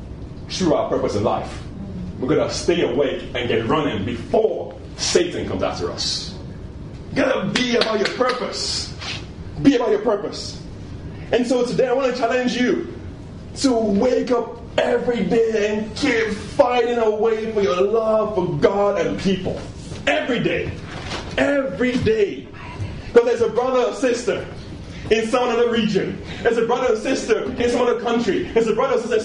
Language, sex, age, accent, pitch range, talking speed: English, male, 30-49, American, 200-245 Hz, 160 wpm